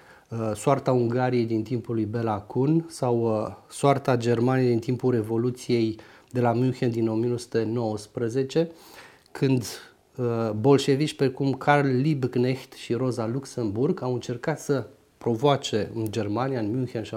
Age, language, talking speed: 30-49, Romanian, 120 wpm